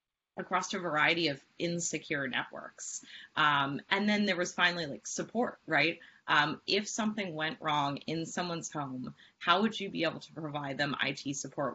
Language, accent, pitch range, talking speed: English, American, 140-160 Hz, 170 wpm